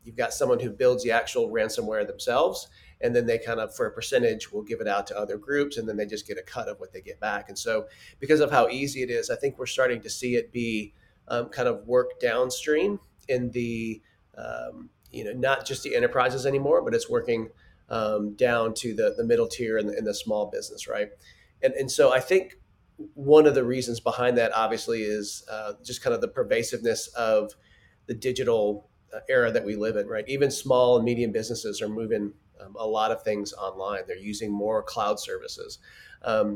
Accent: American